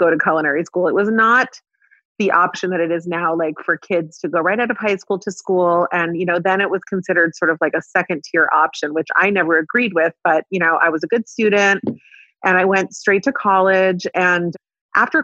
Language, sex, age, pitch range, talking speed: English, female, 30-49, 160-190 Hz, 235 wpm